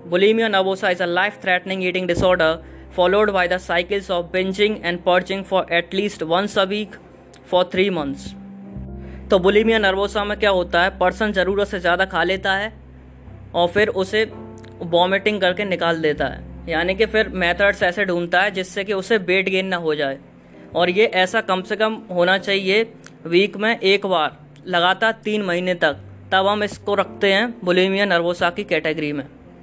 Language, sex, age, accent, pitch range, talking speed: English, female, 20-39, Indian, 170-200 Hz, 140 wpm